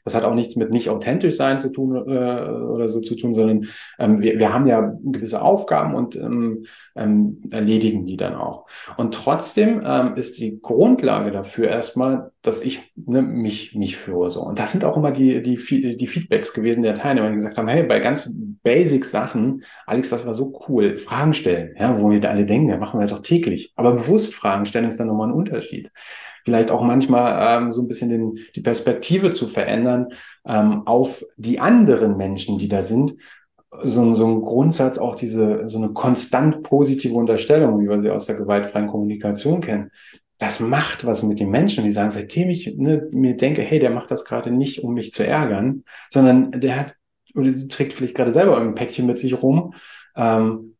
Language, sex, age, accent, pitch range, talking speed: German, male, 30-49, German, 110-140 Hz, 200 wpm